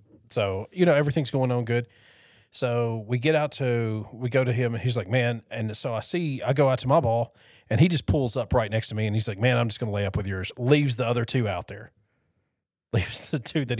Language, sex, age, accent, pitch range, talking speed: English, male, 30-49, American, 105-125 Hz, 260 wpm